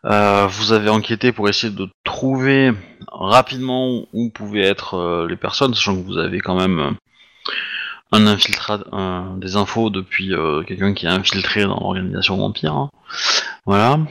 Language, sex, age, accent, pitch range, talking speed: French, male, 30-49, French, 100-120 Hz, 155 wpm